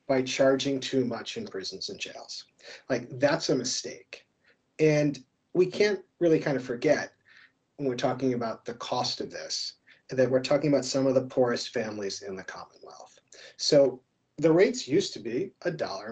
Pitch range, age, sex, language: 130-165 Hz, 40-59, male, English